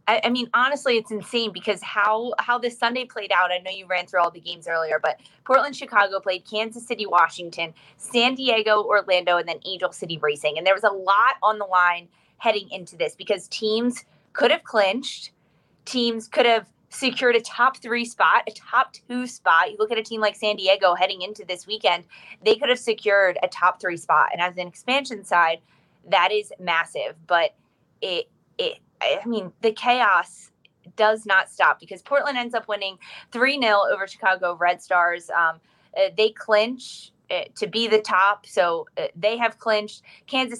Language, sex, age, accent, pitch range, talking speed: English, female, 20-39, American, 180-235 Hz, 185 wpm